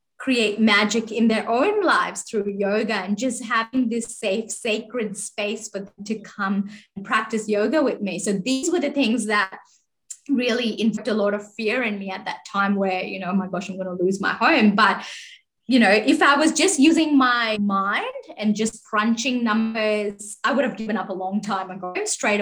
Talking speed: 205 wpm